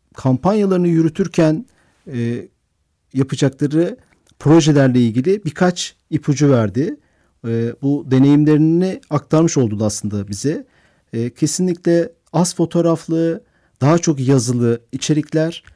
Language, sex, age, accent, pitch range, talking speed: Turkish, male, 50-69, native, 130-165 Hz, 90 wpm